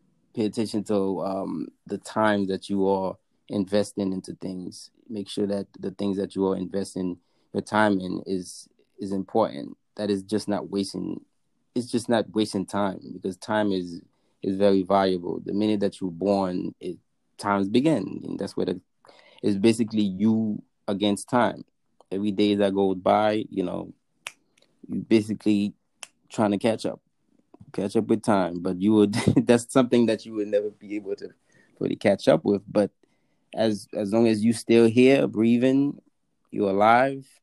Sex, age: male, 20-39